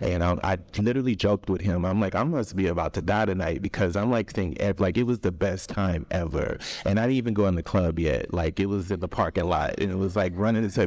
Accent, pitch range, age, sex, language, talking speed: American, 90-110 Hz, 30-49, male, English, 270 wpm